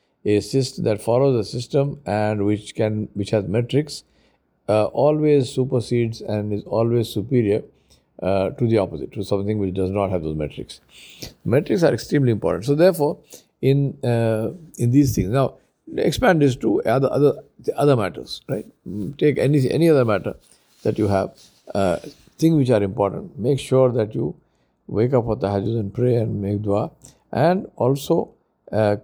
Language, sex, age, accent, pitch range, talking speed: English, male, 50-69, Indian, 100-130 Hz, 170 wpm